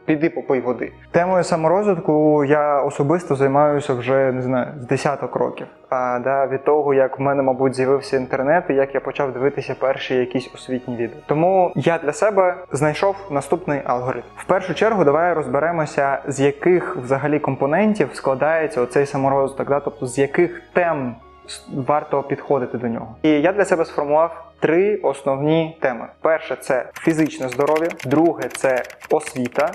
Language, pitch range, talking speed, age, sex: Ukrainian, 135-160 Hz, 155 wpm, 20-39, male